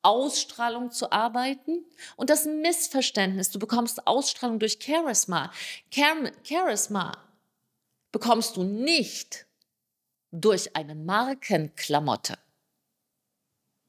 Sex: female